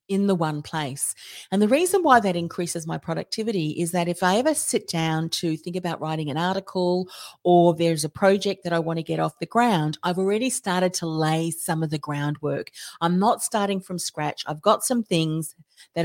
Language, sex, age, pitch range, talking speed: English, female, 40-59, 155-195 Hz, 210 wpm